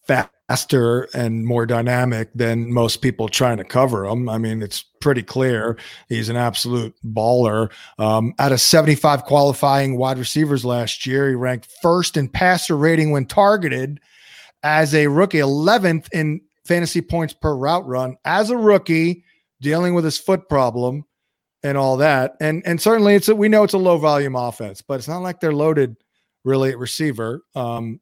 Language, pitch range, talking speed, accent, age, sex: English, 125-160 Hz, 170 wpm, American, 40-59, male